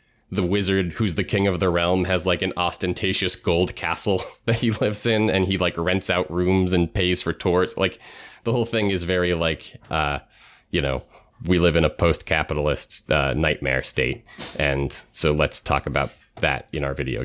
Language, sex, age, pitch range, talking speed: English, male, 30-49, 75-95 Hz, 195 wpm